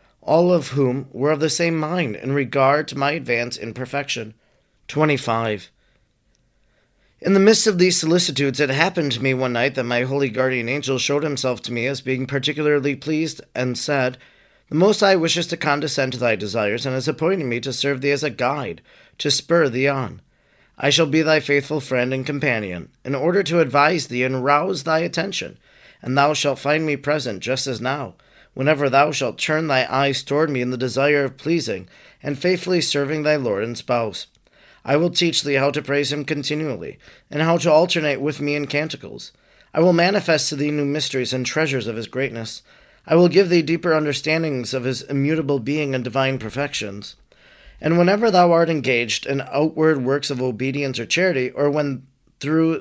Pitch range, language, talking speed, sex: 130-155 Hz, English, 190 wpm, male